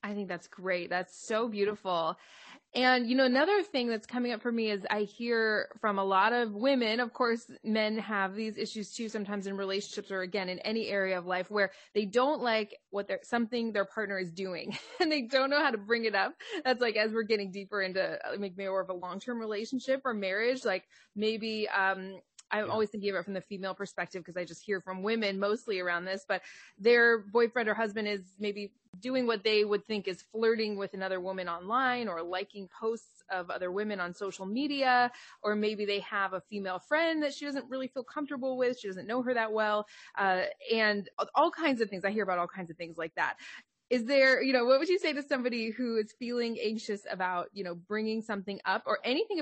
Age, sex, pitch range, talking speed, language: 20-39, female, 195-240 Hz, 225 wpm, English